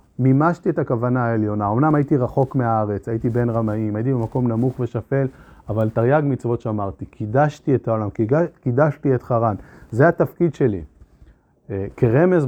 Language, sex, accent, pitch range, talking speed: Hebrew, male, native, 110-145 Hz, 140 wpm